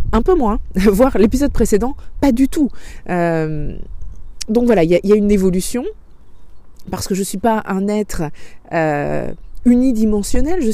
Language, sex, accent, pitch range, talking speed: French, female, French, 160-225 Hz, 155 wpm